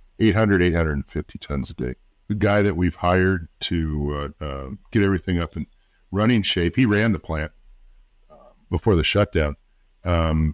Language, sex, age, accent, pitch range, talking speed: English, male, 50-69, American, 80-105 Hz, 160 wpm